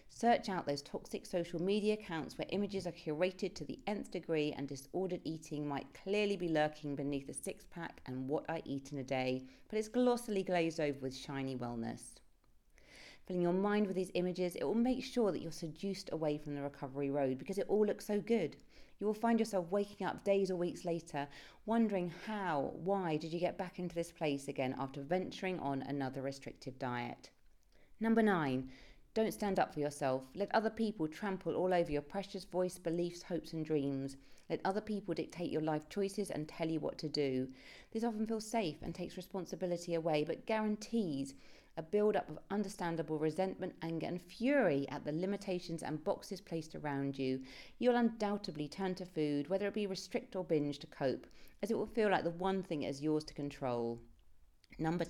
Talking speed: 195 wpm